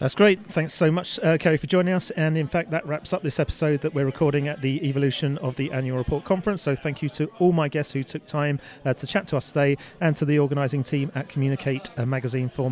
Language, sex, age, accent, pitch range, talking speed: English, male, 30-49, British, 135-165 Hz, 260 wpm